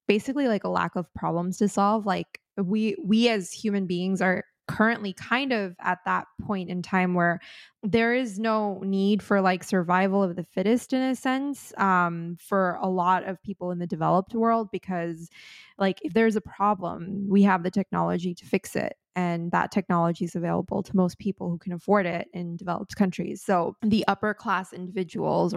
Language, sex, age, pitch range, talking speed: English, female, 20-39, 175-200 Hz, 190 wpm